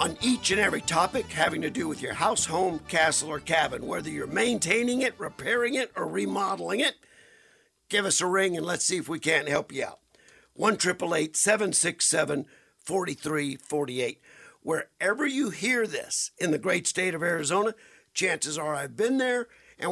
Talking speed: 170 wpm